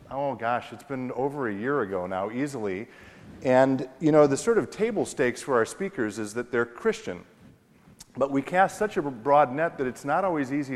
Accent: American